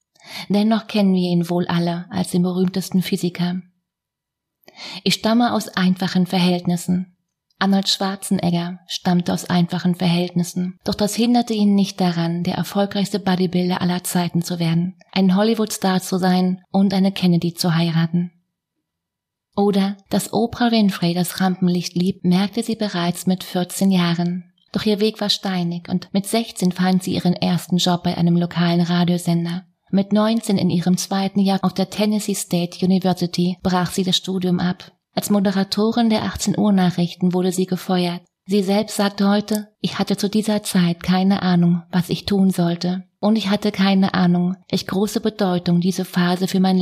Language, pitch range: German, 175-200 Hz